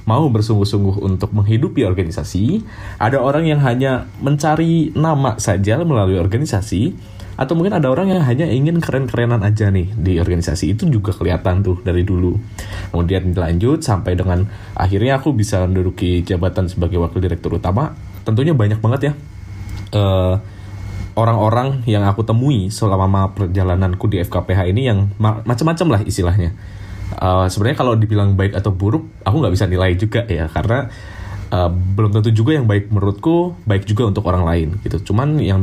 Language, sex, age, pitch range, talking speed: Indonesian, male, 20-39, 95-115 Hz, 155 wpm